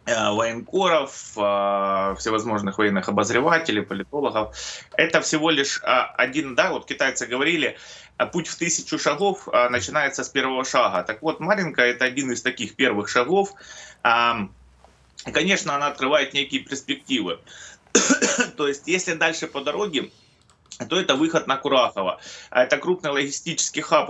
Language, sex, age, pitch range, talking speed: Russian, male, 20-39, 120-155 Hz, 125 wpm